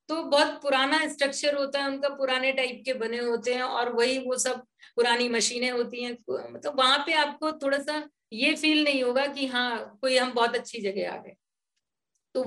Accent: native